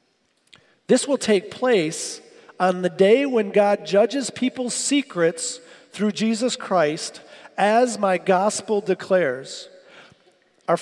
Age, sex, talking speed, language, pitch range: 40-59, male, 110 wpm, English, 210-260 Hz